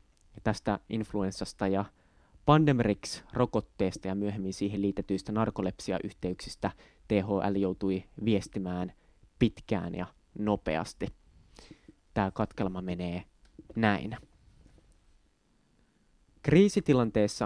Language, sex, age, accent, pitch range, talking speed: Finnish, male, 20-39, native, 95-115 Hz, 70 wpm